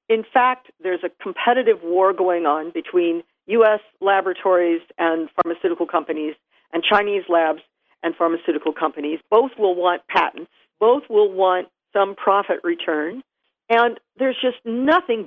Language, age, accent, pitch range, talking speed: English, 50-69, American, 180-230 Hz, 135 wpm